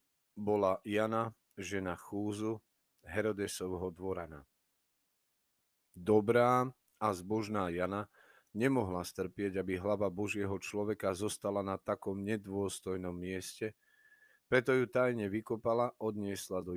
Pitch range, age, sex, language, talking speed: 95-115 Hz, 40-59, male, Slovak, 95 wpm